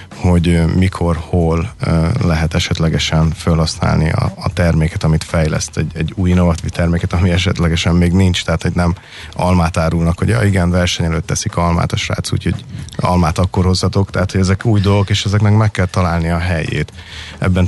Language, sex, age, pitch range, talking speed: Hungarian, male, 30-49, 85-95 Hz, 170 wpm